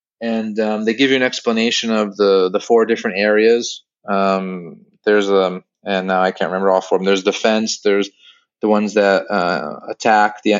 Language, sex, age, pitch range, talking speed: English, male, 30-49, 100-120 Hz, 195 wpm